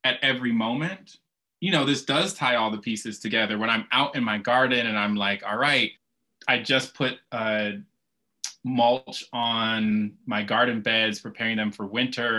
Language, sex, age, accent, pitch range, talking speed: English, male, 20-39, American, 115-155 Hz, 175 wpm